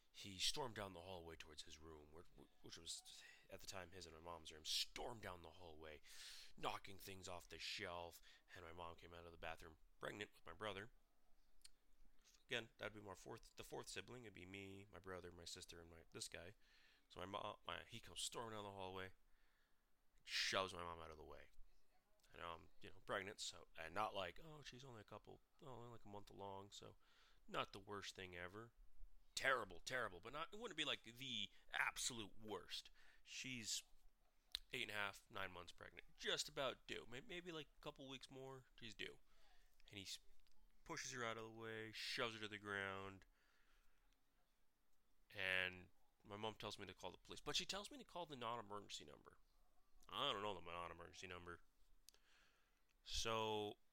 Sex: male